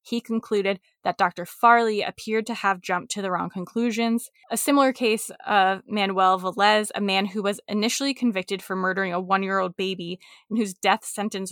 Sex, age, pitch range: female, 20-39, 185-225 Hz